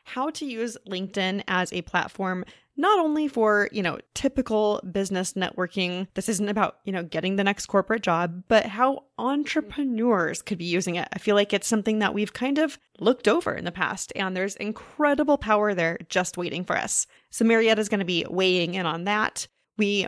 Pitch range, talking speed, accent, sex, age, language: 185-230 Hz, 195 wpm, American, female, 20-39, English